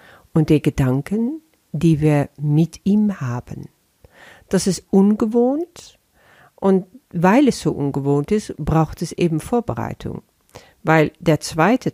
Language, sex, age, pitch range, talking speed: German, female, 50-69, 145-205 Hz, 120 wpm